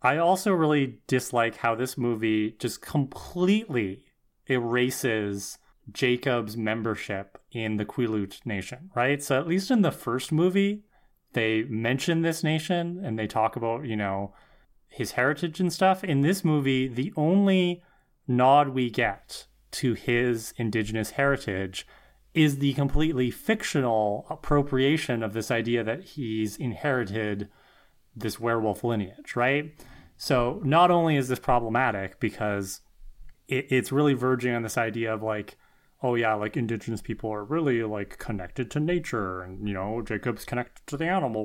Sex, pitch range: male, 110-150 Hz